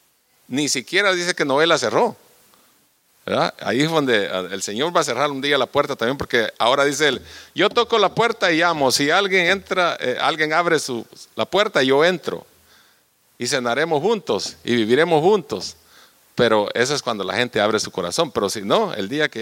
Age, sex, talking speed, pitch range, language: 50-69, male, 185 wpm, 140-180 Hz, English